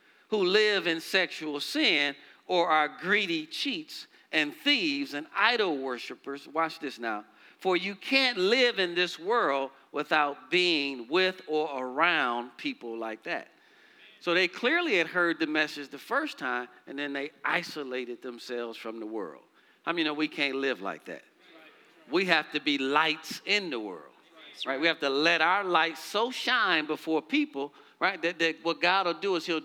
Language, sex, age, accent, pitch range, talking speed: English, male, 50-69, American, 150-205 Hz, 180 wpm